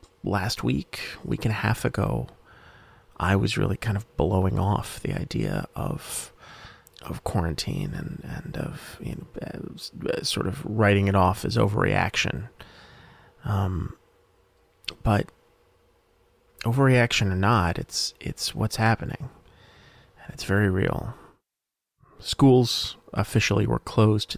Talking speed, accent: 120 wpm, American